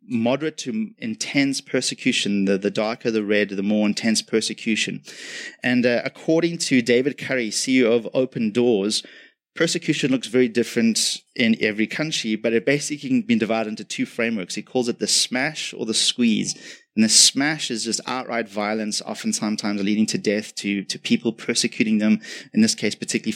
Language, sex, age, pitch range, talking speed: English, male, 20-39, 110-145 Hz, 175 wpm